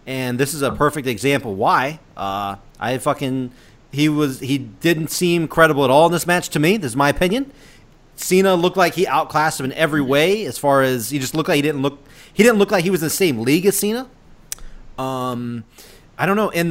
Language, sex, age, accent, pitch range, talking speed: English, male, 30-49, American, 135-180 Hz, 225 wpm